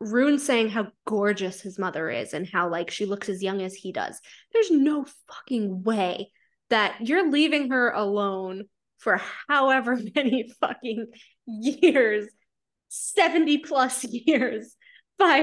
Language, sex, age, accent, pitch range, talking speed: English, female, 20-39, American, 225-310 Hz, 135 wpm